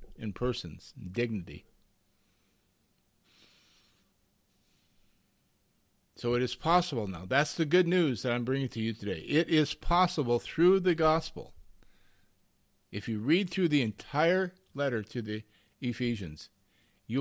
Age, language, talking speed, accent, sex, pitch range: 50-69, English, 120 wpm, American, male, 95-140 Hz